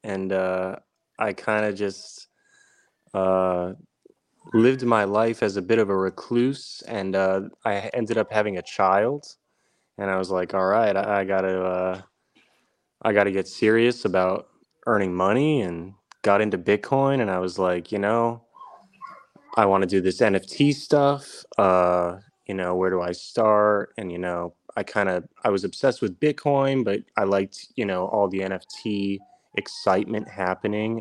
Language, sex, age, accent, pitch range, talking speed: English, male, 20-39, American, 95-110 Hz, 165 wpm